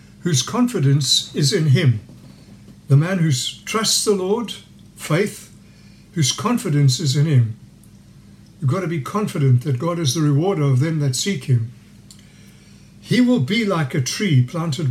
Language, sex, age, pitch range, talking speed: English, male, 60-79, 135-185 Hz, 155 wpm